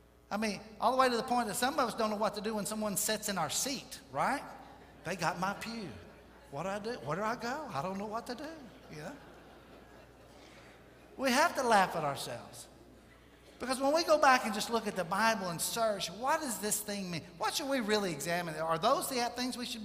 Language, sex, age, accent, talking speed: English, male, 60-79, American, 235 wpm